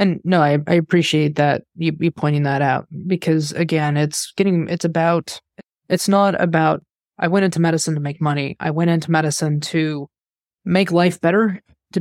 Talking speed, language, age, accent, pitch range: 180 wpm, English, 20-39, American, 155-180 Hz